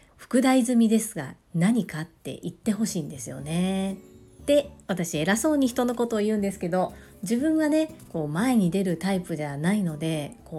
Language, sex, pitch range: Japanese, female, 170-225 Hz